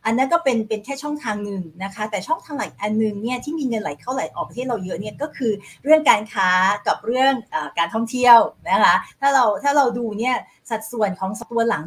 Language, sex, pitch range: Thai, female, 185-240 Hz